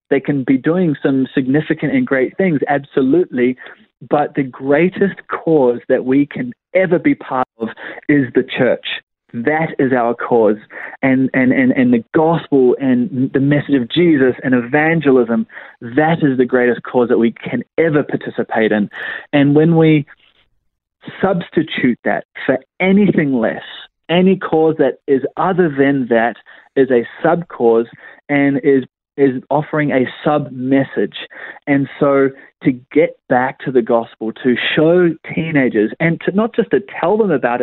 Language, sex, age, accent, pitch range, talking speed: English, male, 30-49, Australian, 130-160 Hz, 150 wpm